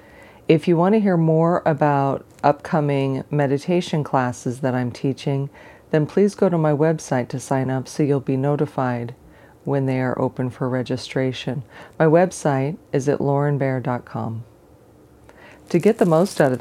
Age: 40-59